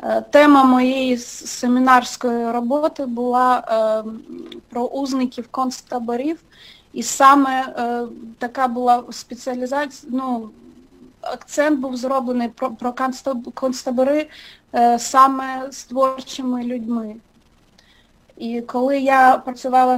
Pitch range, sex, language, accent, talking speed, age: 235-265 Hz, female, Russian, native, 95 wpm, 30-49